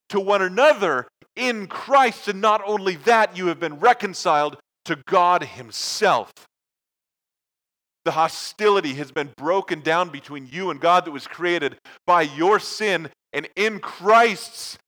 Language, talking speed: English, 140 wpm